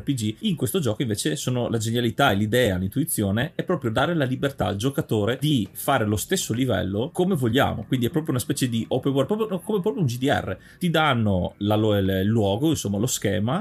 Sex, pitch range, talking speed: male, 105-135 Hz, 205 wpm